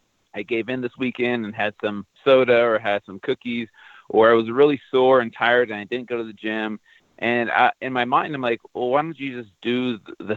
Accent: American